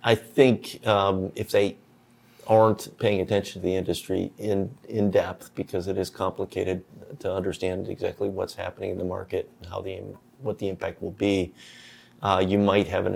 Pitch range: 95-105 Hz